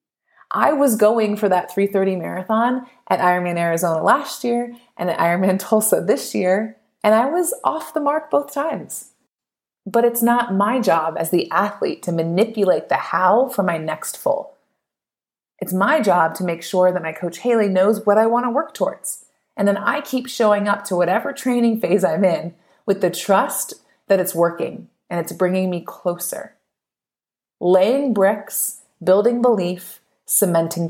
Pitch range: 185-245 Hz